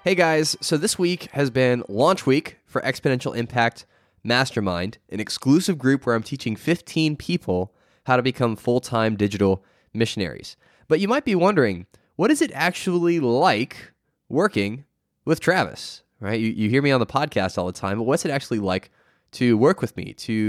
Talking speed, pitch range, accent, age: 180 wpm, 105-150 Hz, American, 10-29